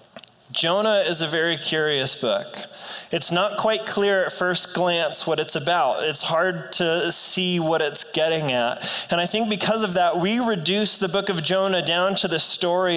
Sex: male